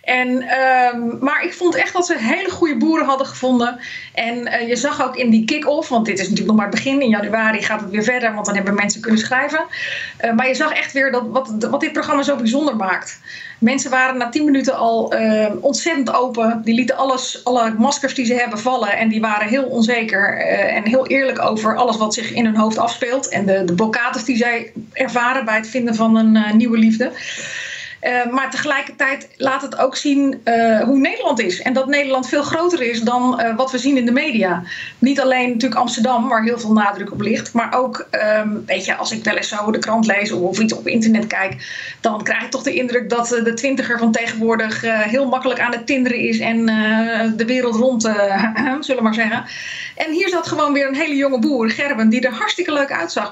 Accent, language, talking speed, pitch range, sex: Dutch, Dutch, 225 wpm, 225-275 Hz, female